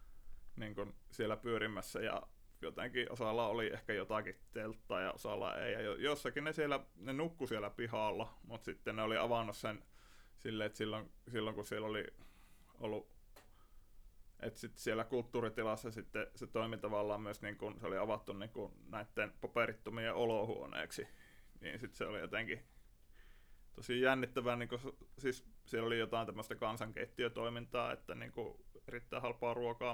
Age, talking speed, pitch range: 20-39, 140 wpm, 110-120 Hz